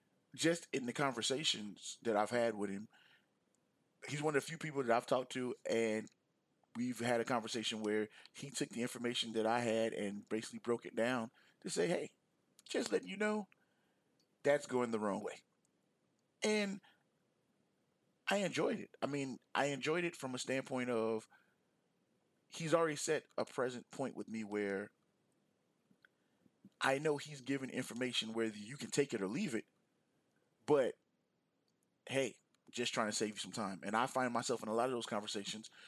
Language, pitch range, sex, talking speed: English, 110-130 Hz, male, 170 wpm